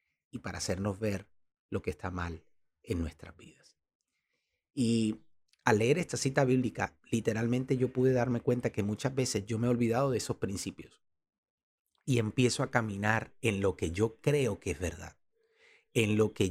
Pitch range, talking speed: 95-115 Hz, 170 wpm